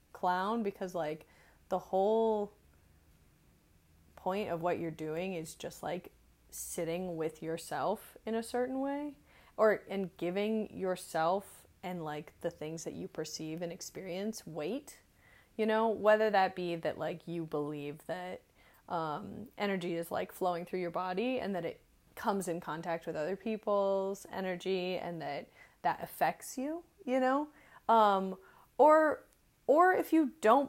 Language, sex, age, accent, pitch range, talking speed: English, female, 20-39, American, 170-220 Hz, 145 wpm